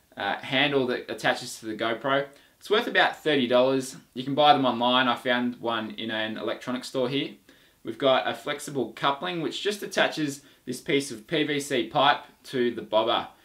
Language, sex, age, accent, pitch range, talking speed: English, male, 20-39, Australian, 115-140 Hz, 180 wpm